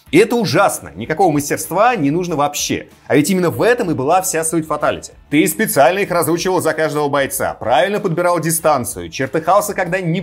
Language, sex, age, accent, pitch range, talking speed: Russian, male, 30-49, native, 145-190 Hz, 175 wpm